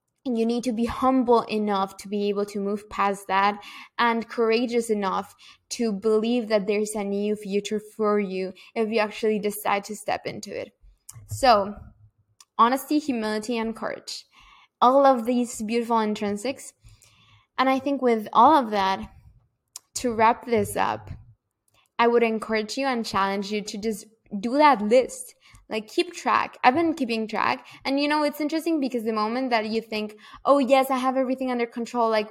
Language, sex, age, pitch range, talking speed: English, female, 20-39, 205-240 Hz, 175 wpm